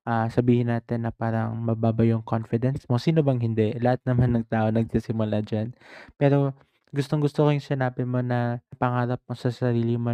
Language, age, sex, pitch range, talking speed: Filipino, 20-39, male, 120-135 Hz, 190 wpm